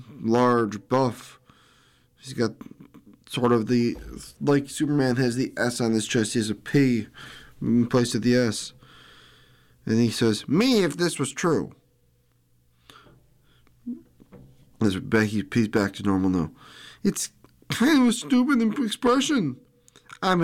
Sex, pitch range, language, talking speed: male, 100-140 Hz, English, 130 wpm